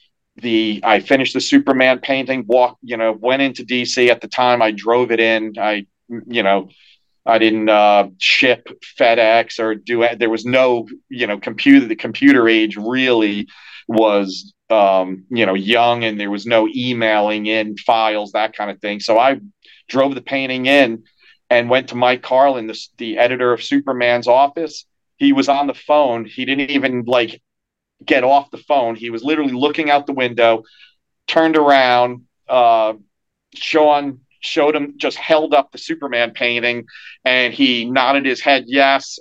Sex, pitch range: male, 110-135 Hz